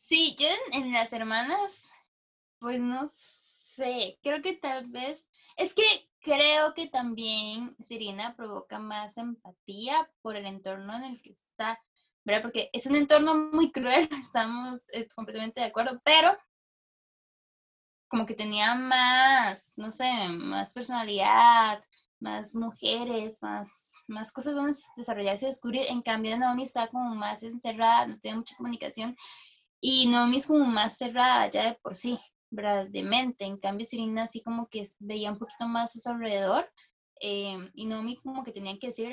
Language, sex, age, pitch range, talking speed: Spanish, female, 10-29, 210-255 Hz, 160 wpm